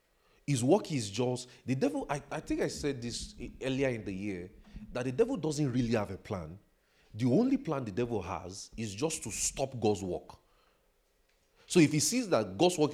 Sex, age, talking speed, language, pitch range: male, 40-59, 200 wpm, English, 115-160 Hz